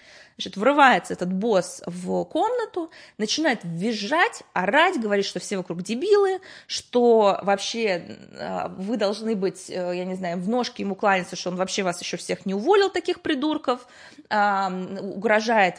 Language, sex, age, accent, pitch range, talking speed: Russian, female, 20-39, native, 195-300 Hz, 140 wpm